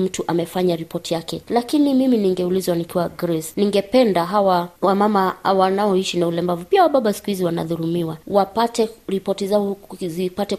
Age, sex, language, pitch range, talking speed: 20-39, female, Swahili, 175-200 Hz, 135 wpm